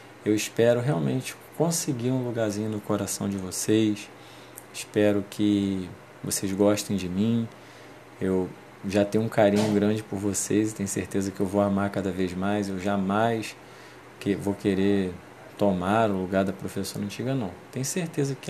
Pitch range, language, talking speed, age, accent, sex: 100-115 Hz, Portuguese, 155 wpm, 20-39, Brazilian, male